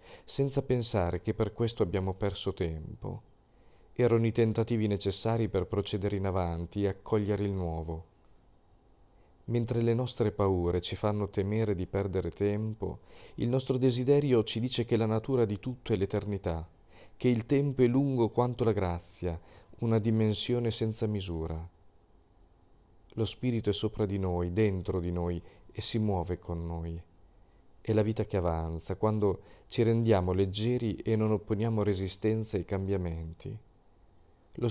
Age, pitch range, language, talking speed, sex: 40-59, 90-115 Hz, Italian, 145 wpm, male